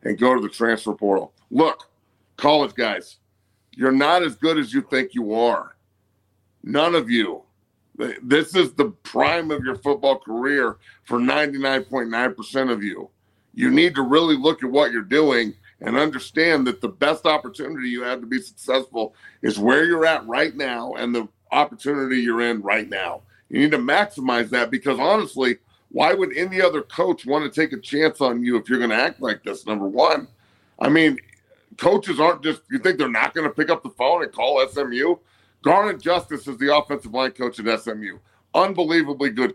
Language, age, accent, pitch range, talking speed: English, 50-69, American, 120-155 Hz, 190 wpm